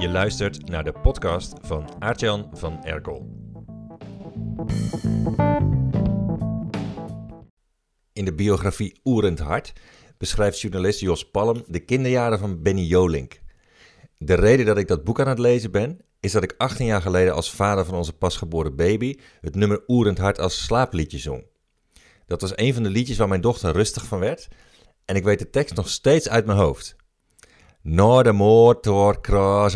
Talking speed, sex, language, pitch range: 155 wpm, male, Dutch, 95-120 Hz